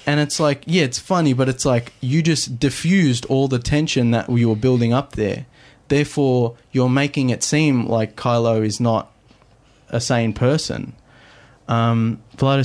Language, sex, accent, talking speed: English, male, Australian, 160 wpm